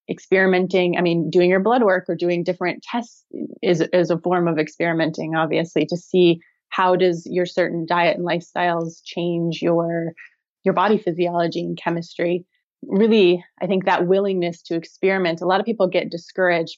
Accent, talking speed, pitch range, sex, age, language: American, 170 wpm, 170-185 Hz, female, 20-39, English